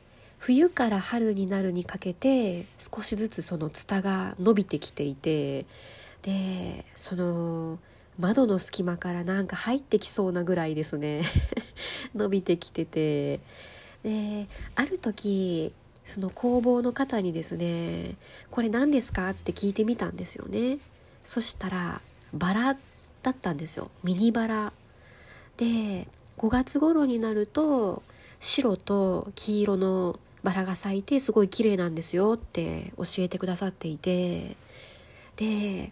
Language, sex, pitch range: Japanese, female, 175-235 Hz